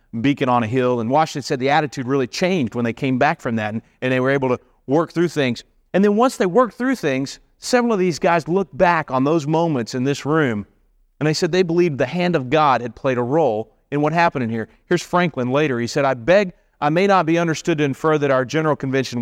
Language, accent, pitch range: English, American, 130-185 Hz